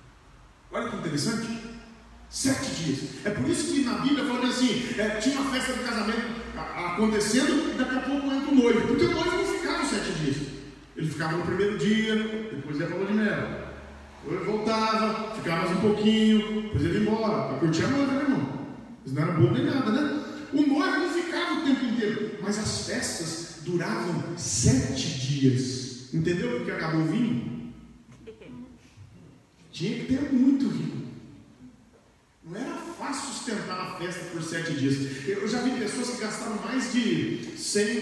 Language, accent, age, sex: Portuguese, Brazilian, 40-59, male